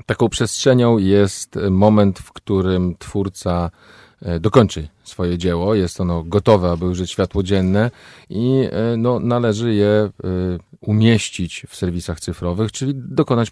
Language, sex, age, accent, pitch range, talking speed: Polish, male, 40-59, native, 90-115 Hz, 115 wpm